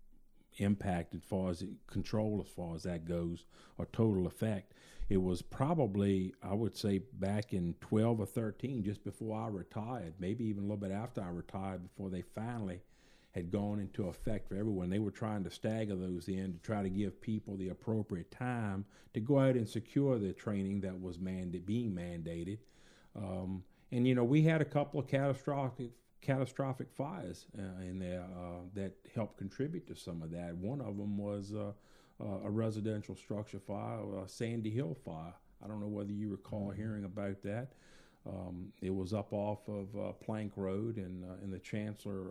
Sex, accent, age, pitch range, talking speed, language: male, American, 50-69, 95-110 Hz, 185 wpm, English